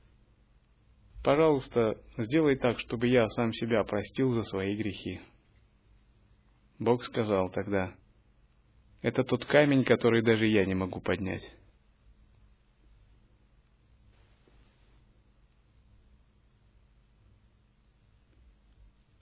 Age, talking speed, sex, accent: 30-49, 70 wpm, male, native